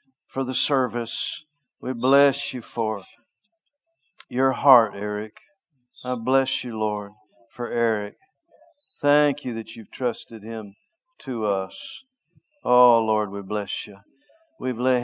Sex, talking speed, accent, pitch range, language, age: male, 125 wpm, American, 110-145 Hz, English, 50-69